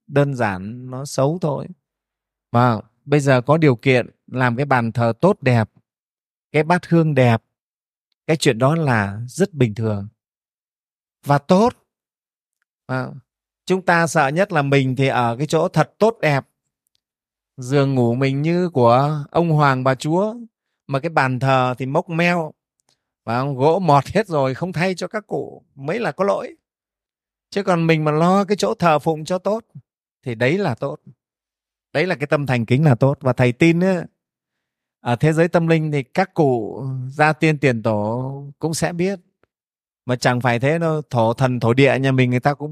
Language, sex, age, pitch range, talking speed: Vietnamese, male, 20-39, 125-165 Hz, 185 wpm